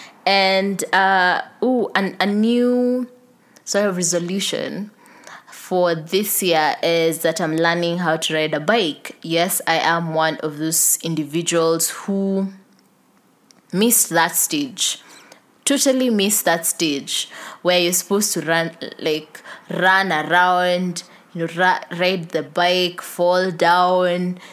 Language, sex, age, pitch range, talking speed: English, female, 20-39, 170-230 Hz, 125 wpm